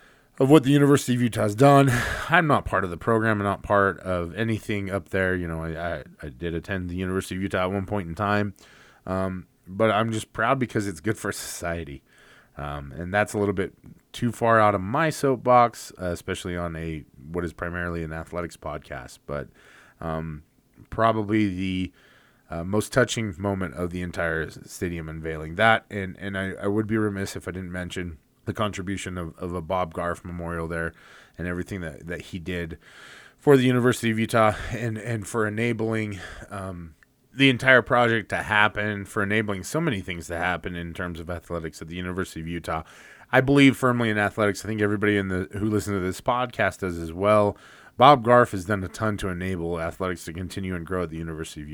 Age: 20-39